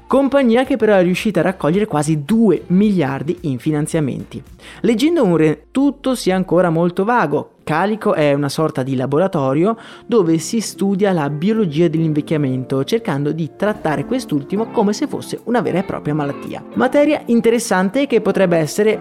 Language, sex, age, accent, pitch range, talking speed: Italian, male, 20-39, native, 155-210 Hz, 155 wpm